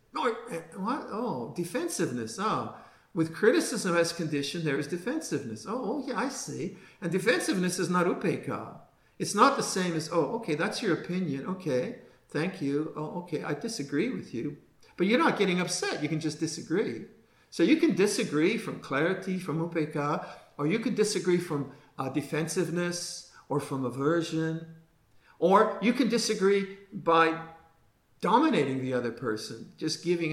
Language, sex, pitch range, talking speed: English, male, 160-215 Hz, 155 wpm